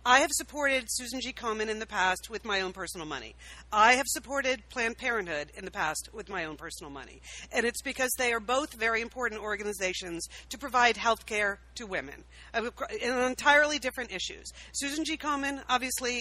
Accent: American